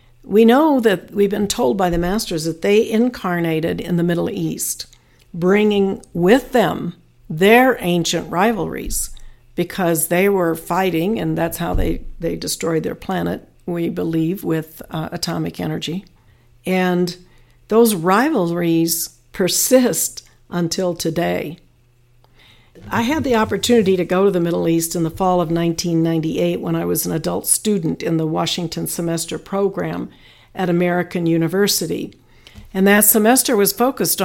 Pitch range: 165-200 Hz